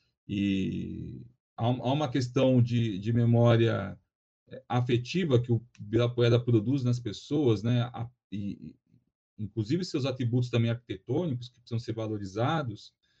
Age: 40-59